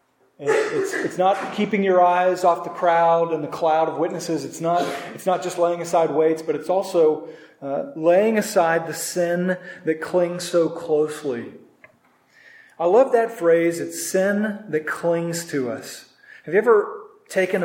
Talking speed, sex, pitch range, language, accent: 165 wpm, male, 160-185 Hz, English, American